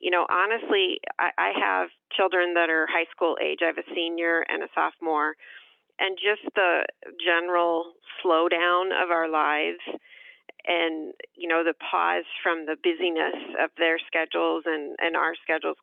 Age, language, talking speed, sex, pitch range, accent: 40-59, English, 155 wpm, female, 165-200 Hz, American